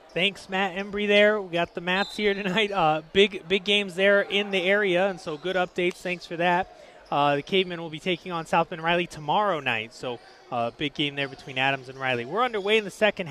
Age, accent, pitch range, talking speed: 30-49, American, 170-205 Hz, 235 wpm